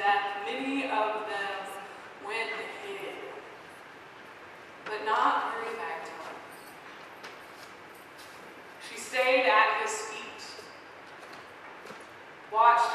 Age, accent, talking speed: 20-39, American, 70 wpm